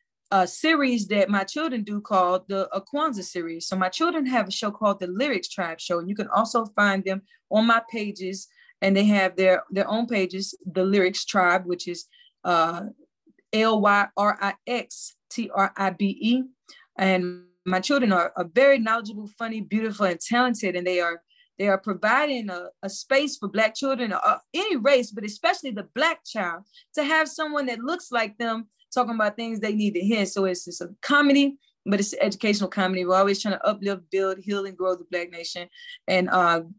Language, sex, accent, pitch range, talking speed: English, female, American, 190-250 Hz, 190 wpm